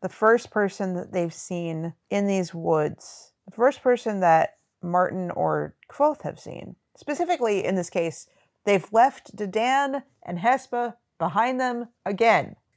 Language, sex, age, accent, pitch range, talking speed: English, female, 40-59, American, 170-215 Hz, 140 wpm